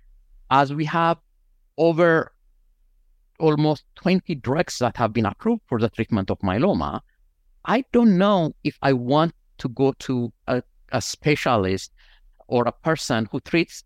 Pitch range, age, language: 100-130 Hz, 50-69, English